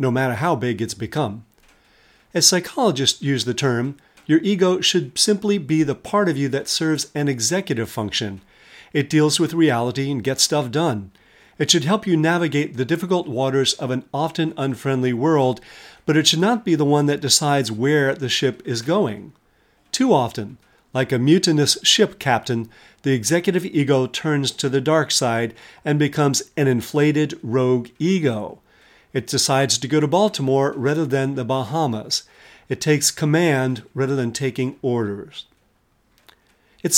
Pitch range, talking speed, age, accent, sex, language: 130-160 Hz, 160 wpm, 40-59, American, male, English